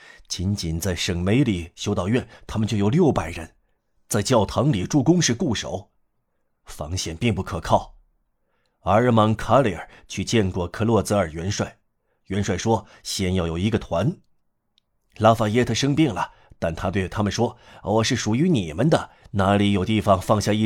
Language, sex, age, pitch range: Chinese, male, 30-49, 95-115 Hz